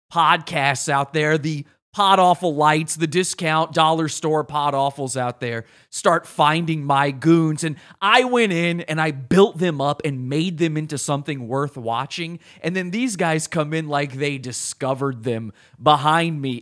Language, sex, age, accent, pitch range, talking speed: English, male, 30-49, American, 140-185 Hz, 170 wpm